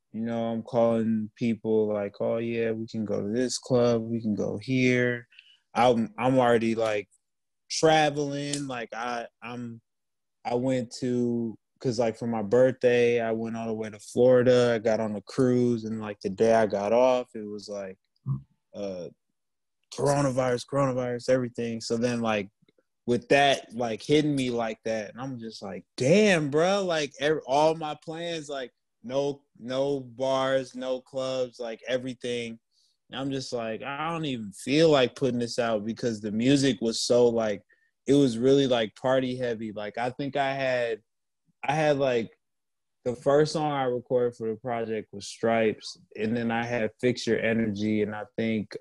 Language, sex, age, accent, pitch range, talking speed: English, male, 20-39, American, 110-130 Hz, 170 wpm